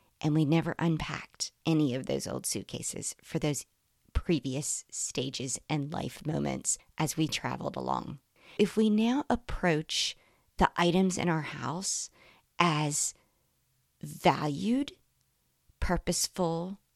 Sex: female